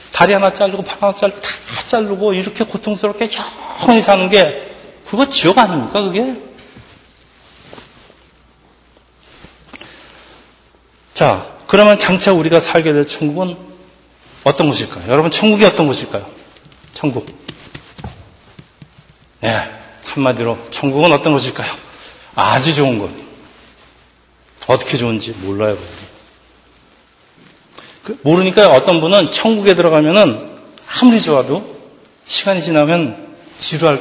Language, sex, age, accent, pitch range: Korean, male, 40-59, native, 145-210 Hz